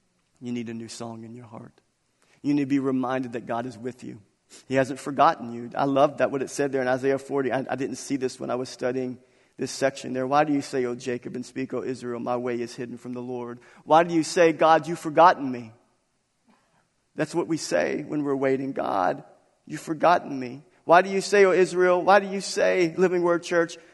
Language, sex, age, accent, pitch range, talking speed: English, male, 40-59, American, 130-175 Hz, 235 wpm